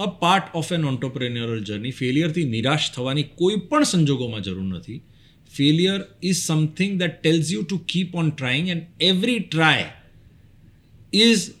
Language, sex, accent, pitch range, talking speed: Gujarati, male, native, 115-155 Hz, 150 wpm